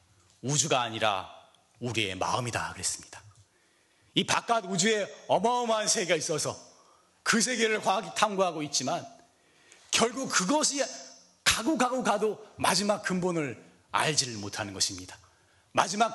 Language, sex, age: Korean, male, 40-59